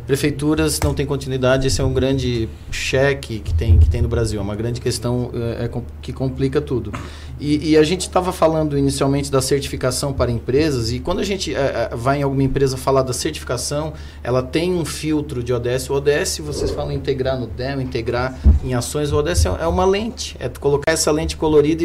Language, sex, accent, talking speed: Portuguese, male, Brazilian, 200 wpm